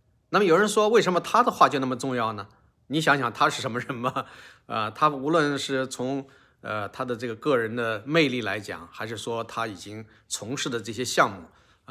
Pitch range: 110-140 Hz